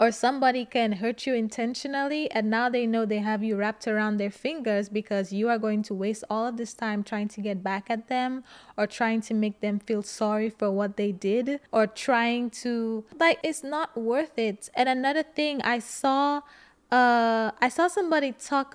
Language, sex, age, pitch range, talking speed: English, female, 20-39, 205-245 Hz, 200 wpm